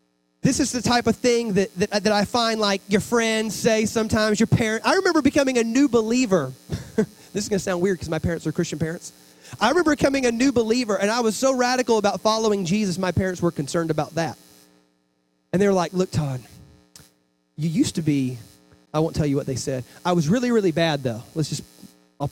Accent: American